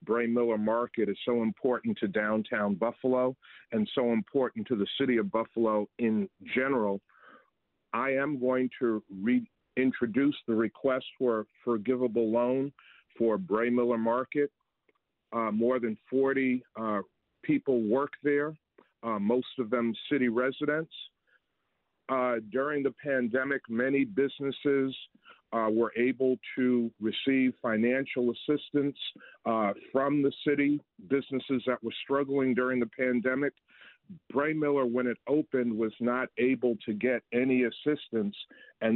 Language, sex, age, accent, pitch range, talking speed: English, male, 50-69, American, 115-135 Hz, 130 wpm